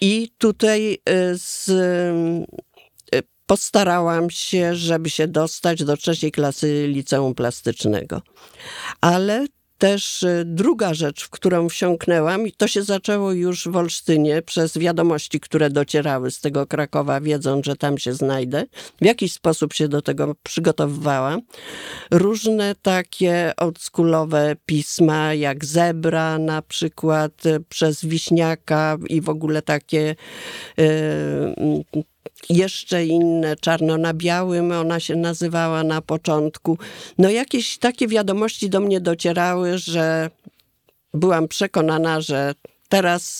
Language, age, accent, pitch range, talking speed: Polish, 50-69, native, 150-180 Hz, 115 wpm